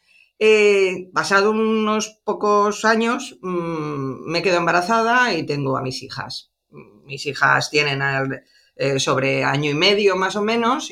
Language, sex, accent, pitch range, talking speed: Spanish, female, Spanish, 140-200 Hz, 150 wpm